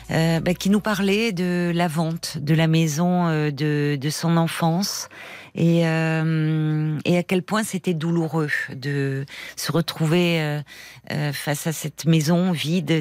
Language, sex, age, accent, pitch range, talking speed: French, female, 40-59, French, 165-195 Hz, 155 wpm